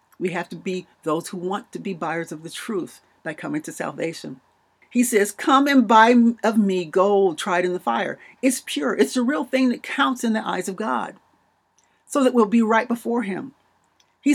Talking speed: 210 wpm